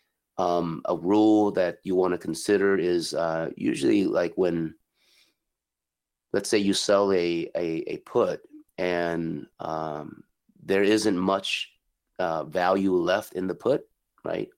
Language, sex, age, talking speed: English, male, 30-49, 135 wpm